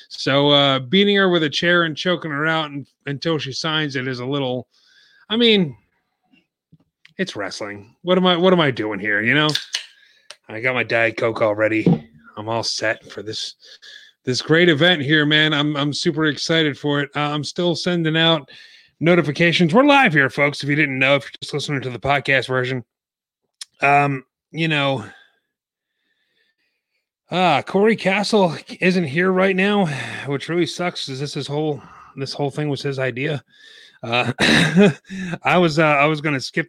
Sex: male